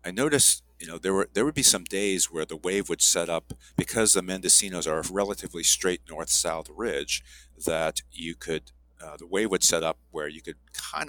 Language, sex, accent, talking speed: English, male, American, 210 wpm